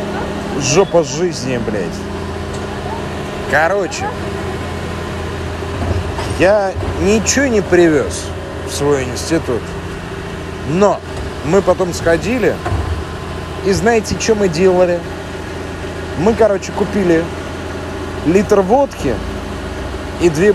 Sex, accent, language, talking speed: male, native, Russian, 80 wpm